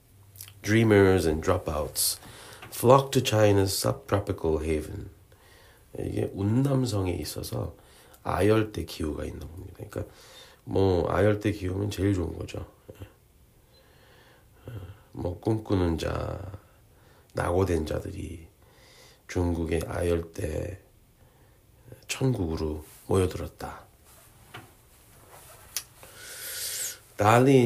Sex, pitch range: male, 95-110 Hz